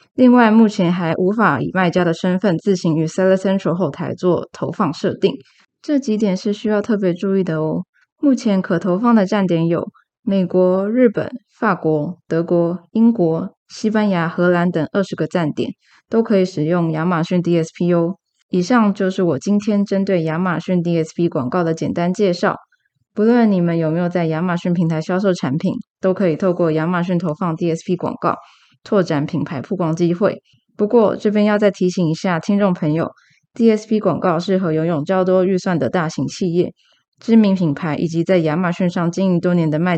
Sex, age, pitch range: female, 20-39, 165-195 Hz